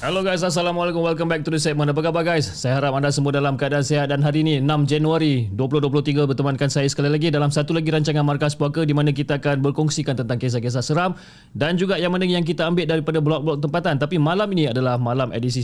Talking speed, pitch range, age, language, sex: 225 wpm, 135-165 Hz, 20-39, Malay, male